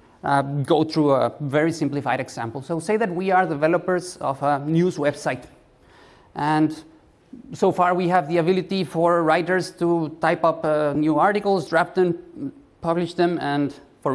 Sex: male